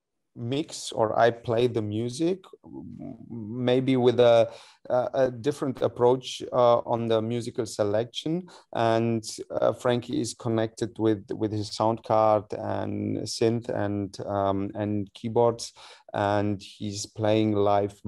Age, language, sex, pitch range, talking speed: 30-49, English, male, 105-115 Hz, 125 wpm